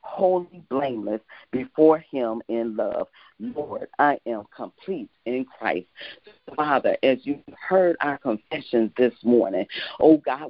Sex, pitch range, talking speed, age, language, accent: female, 115-155 Hz, 125 wpm, 40-59, English, American